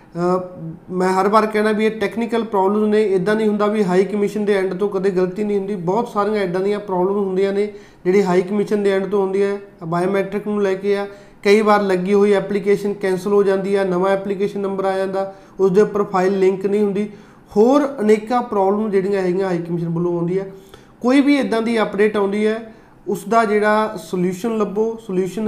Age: 20-39